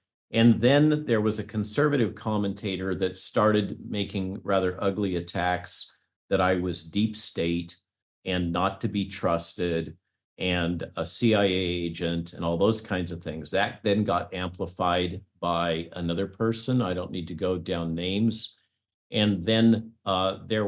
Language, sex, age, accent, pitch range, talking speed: English, male, 50-69, American, 90-110 Hz, 150 wpm